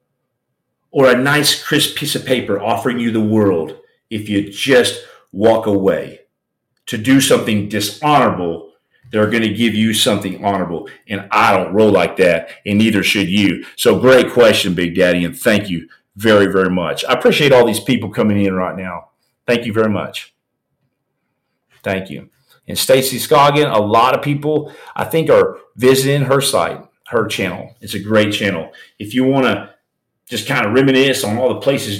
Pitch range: 100-140 Hz